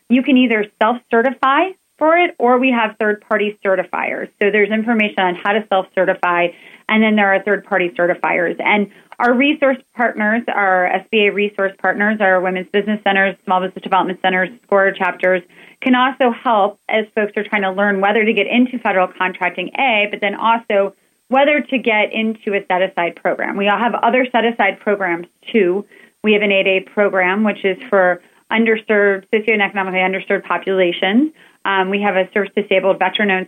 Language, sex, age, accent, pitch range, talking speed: English, female, 30-49, American, 185-225 Hz, 165 wpm